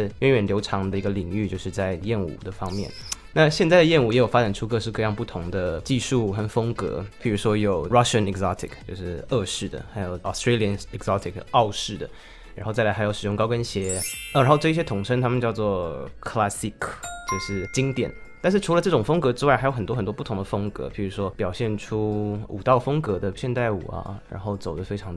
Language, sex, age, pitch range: Chinese, male, 20-39, 95-120 Hz